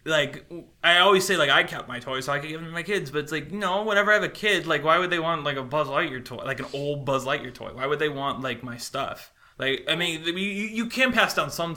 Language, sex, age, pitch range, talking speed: English, male, 20-39, 120-155 Hz, 295 wpm